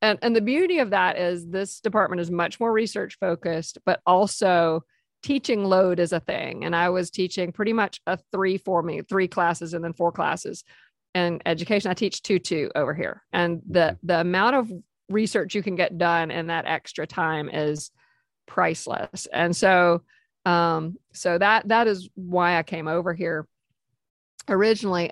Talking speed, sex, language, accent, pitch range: 175 wpm, female, English, American, 170-205 Hz